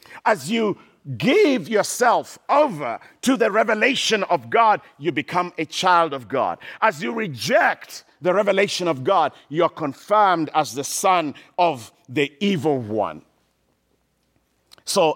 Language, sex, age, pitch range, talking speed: English, male, 50-69, 165-220 Hz, 135 wpm